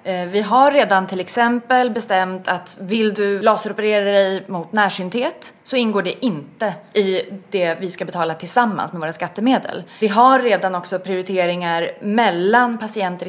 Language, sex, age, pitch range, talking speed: Swedish, female, 20-39, 180-245 Hz, 150 wpm